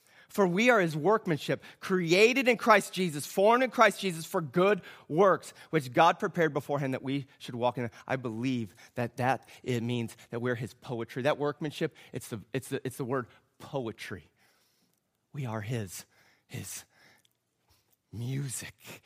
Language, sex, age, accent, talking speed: English, male, 30-49, American, 155 wpm